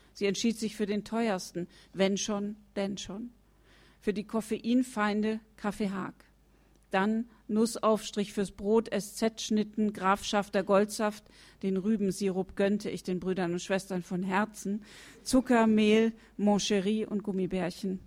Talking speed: 125 wpm